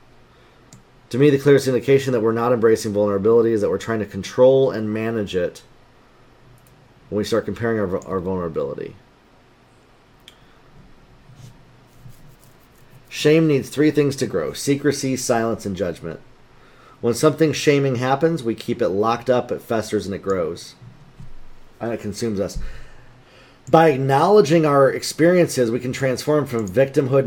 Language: English